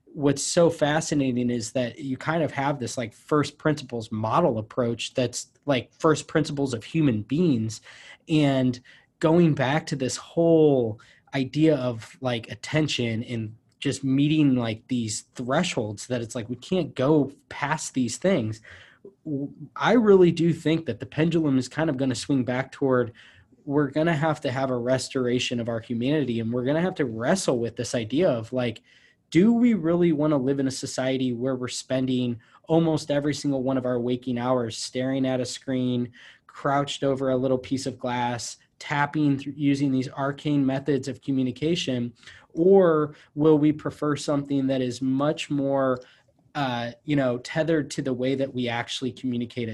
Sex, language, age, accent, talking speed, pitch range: male, English, 20-39, American, 175 wpm, 125-145 Hz